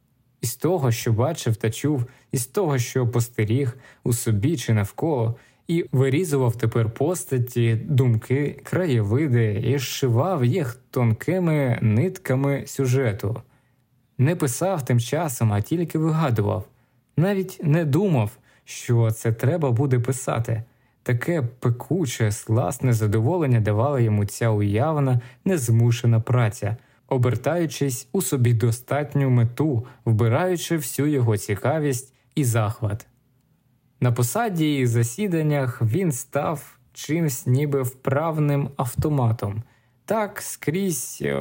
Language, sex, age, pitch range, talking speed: Ukrainian, male, 20-39, 115-145 Hz, 110 wpm